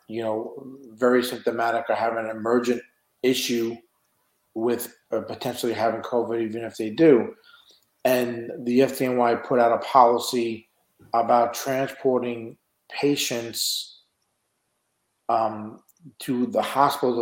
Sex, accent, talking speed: male, American, 110 wpm